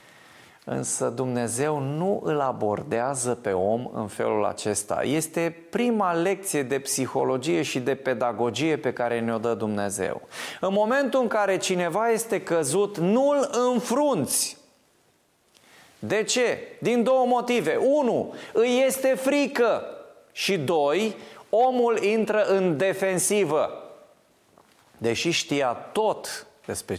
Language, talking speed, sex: Romanian, 115 wpm, male